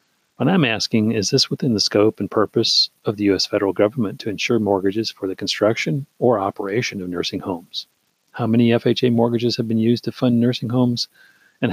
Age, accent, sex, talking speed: 40-59, American, male, 195 wpm